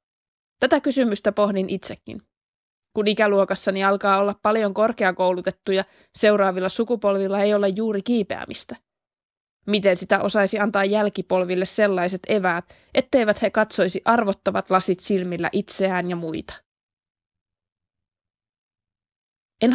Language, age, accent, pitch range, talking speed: Finnish, 20-39, native, 185-210 Hz, 100 wpm